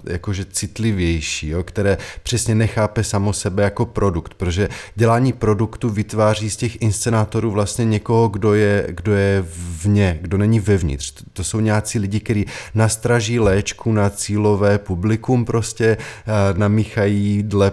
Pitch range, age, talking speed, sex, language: 100-110 Hz, 20-39, 135 wpm, male, Czech